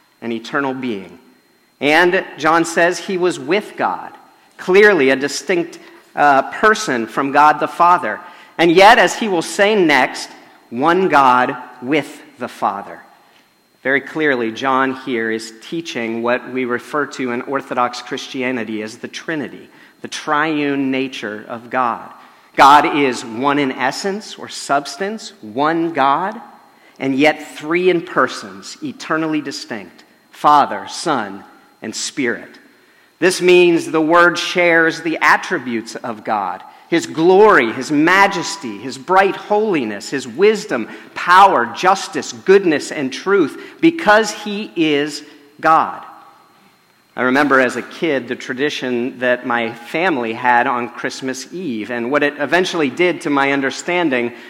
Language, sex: English, male